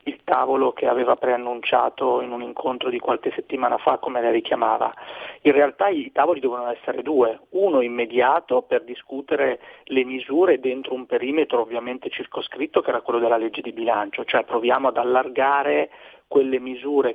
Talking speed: 160 wpm